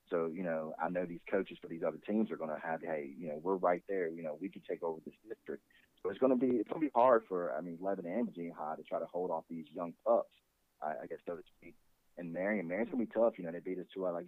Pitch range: 80-90 Hz